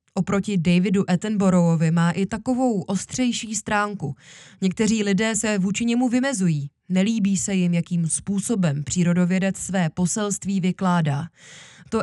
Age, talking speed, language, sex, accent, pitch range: 20-39, 120 wpm, Czech, female, native, 180-225 Hz